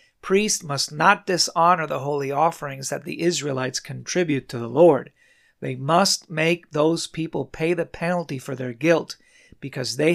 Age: 40-59